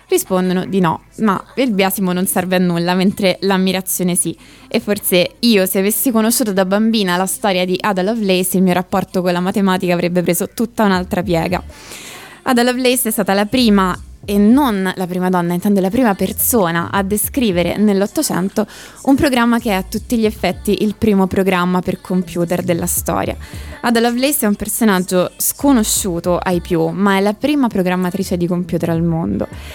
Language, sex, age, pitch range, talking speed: Italian, female, 20-39, 180-215 Hz, 175 wpm